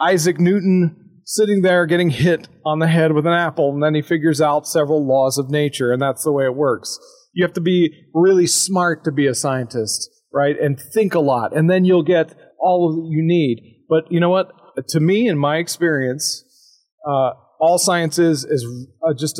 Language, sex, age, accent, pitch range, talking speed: English, male, 40-59, American, 145-185 Hz, 205 wpm